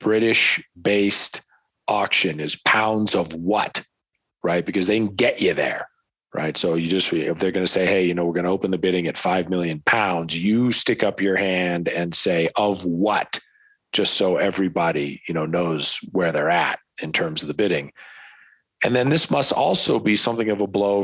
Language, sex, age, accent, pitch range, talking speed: English, male, 40-59, American, 90-110 Hz, 195 wpm